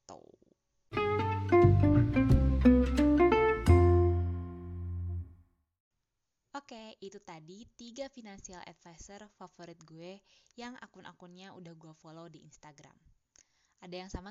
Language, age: Indonesian, 20-39